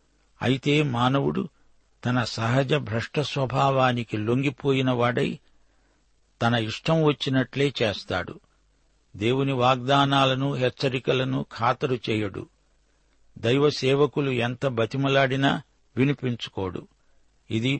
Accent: native